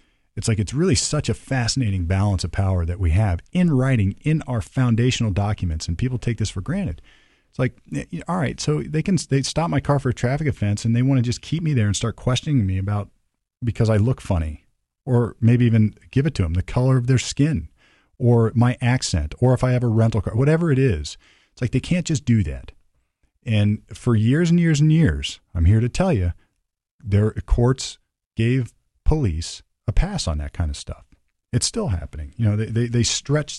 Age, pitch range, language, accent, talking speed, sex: 40-59, 90-125 Hz, English, American, 215 wpm, male